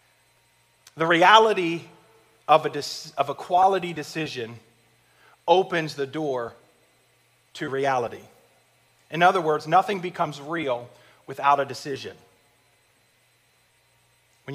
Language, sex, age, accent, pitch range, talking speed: English, male, 30-49, American, 140-185 Hz, 100 wpm